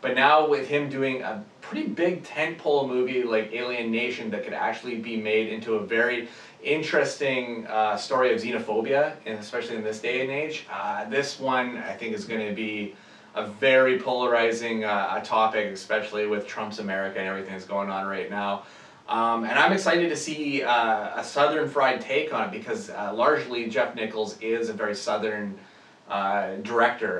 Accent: American